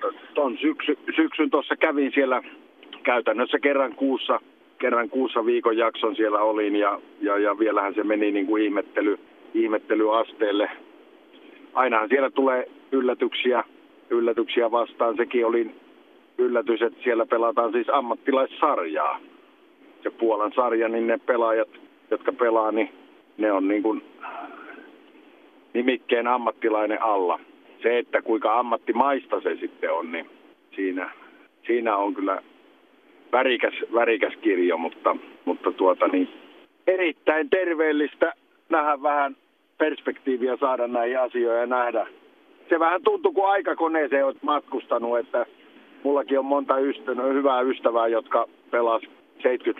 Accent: native